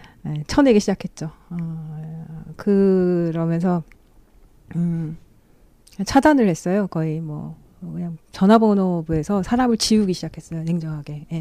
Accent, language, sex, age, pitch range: native, Korean, female, 40-59, 165-230 Hz